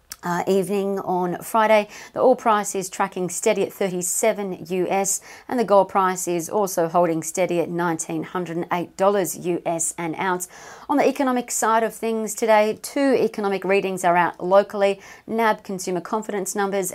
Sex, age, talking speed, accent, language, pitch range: female, 40-59, 150 wpm, Australian, English, 175-210 Hz